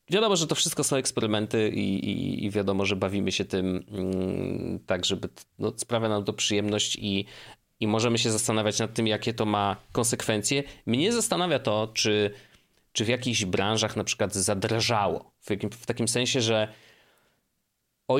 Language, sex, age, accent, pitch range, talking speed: Polish, male, 30-49, native, 105-130 Hz, 170 wpm